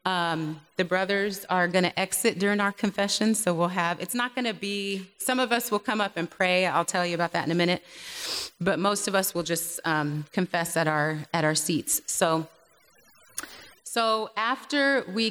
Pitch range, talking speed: 180-220 Hz, 200 wpm